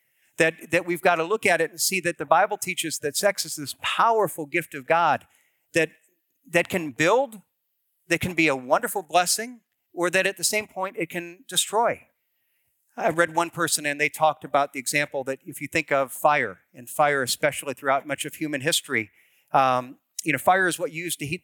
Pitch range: 150-180 Hz